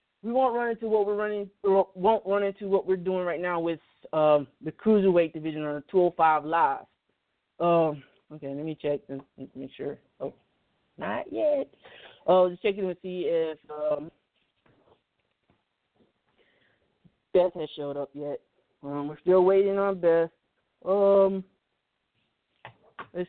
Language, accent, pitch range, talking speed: English, American, 150-195 Hz, 130 wpm